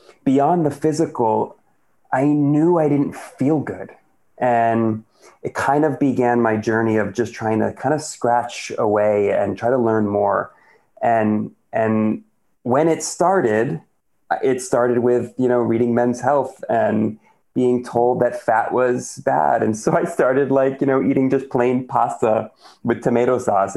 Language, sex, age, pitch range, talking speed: English, male, 30-49, 110-125 Hz, 160 wpm